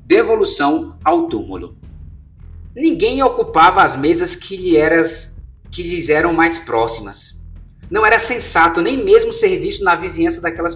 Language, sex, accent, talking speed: Portuguese, male, Brazilian, 140 wpm